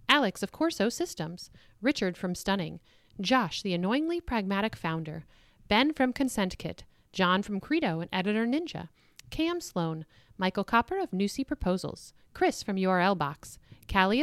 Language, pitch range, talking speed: English, 175-260 Hz, 140 wpm